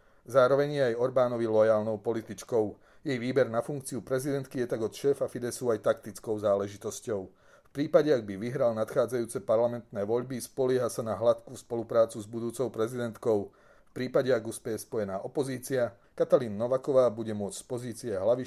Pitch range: 110-130 Hz